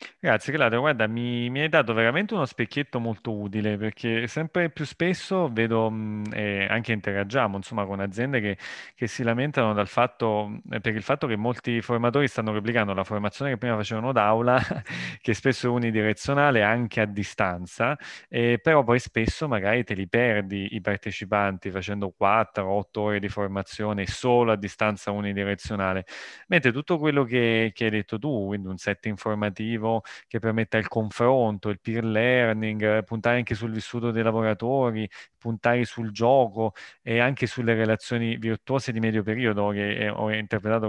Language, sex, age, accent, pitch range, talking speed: Italian, male, 30-49, native, 105-120 Hz, 165 wpm